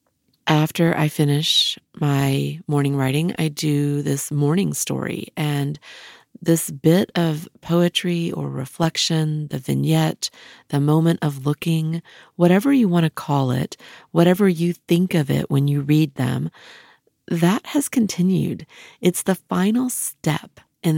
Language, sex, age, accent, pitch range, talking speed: English, female, 40-59, American, 145-185 Hz, 135 wpm